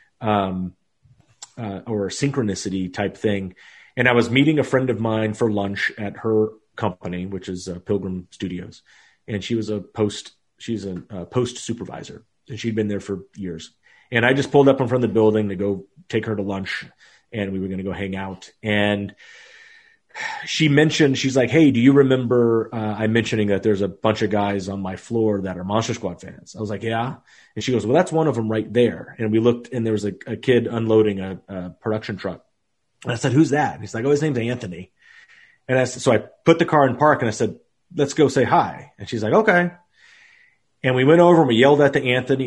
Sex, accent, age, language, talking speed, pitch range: male, American, 30-49, English, 230 wpm, 105-135 Hz